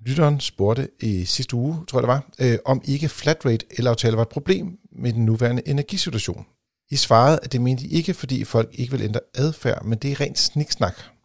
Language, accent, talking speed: Danish, native, 215 wpm